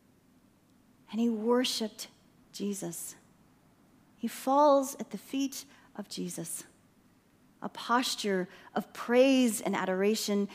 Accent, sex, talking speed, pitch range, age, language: American, female, 95 wpm, 205-275 Hz, 30-49, English